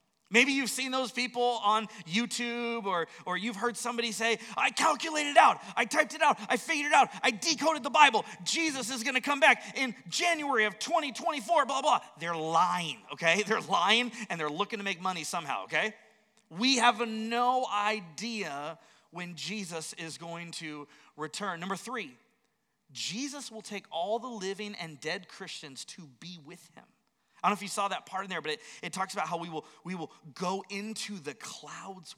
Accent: American